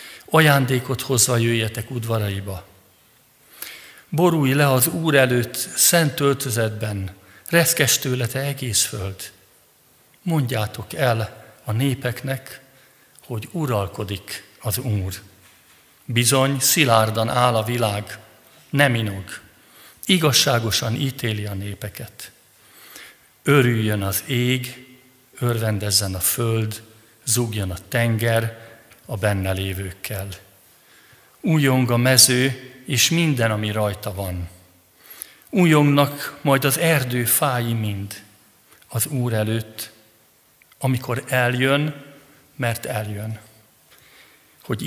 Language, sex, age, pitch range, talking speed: Hungarian, male, 50-69, 105-130 Hz, 90 wpm